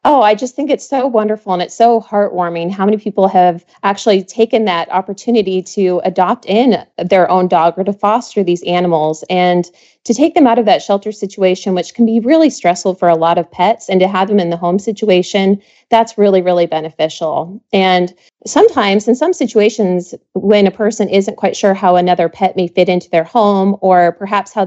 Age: 30-49